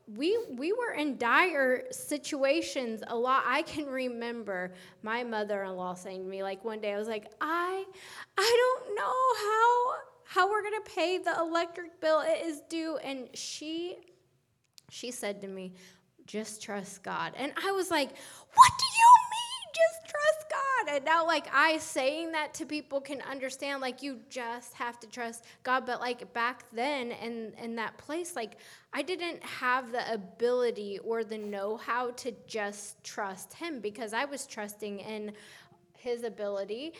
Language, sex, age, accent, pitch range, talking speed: English, female, 10-29, American, 215-300 Hz, 165 wpm